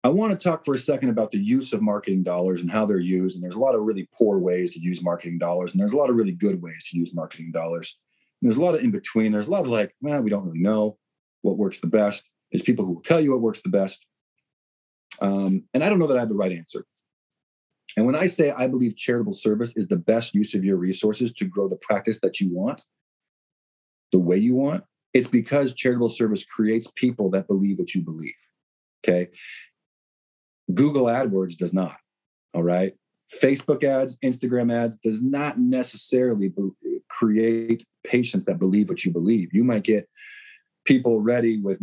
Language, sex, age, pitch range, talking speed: English, male, 40-59, 95-125 Hz, 210 wpm